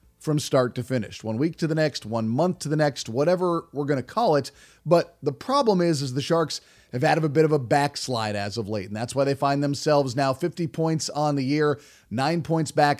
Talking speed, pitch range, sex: 240 wpm, 140-165 Hz, male